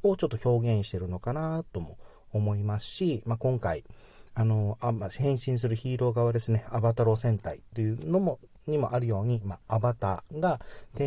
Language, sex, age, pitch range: Japanese, male, 40-59, 105-130 Hz